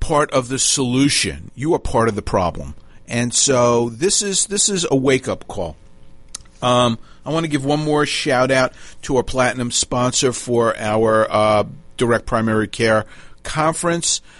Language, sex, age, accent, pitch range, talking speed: English, male, 40-59, American, 105-125 Hz, 165 wpm